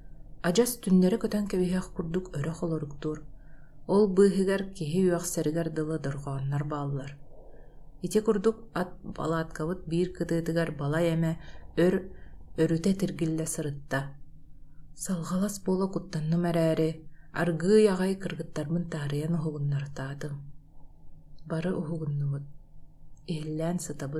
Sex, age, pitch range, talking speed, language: female, 30-49, 155-185 Hz, 70 wpm, Russian